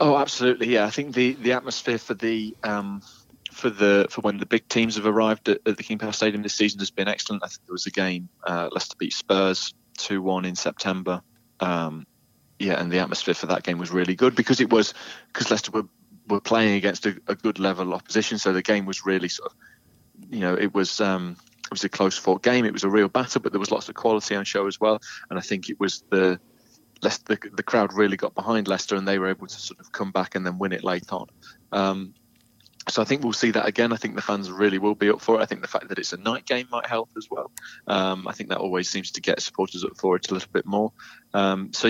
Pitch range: 95-110 Hz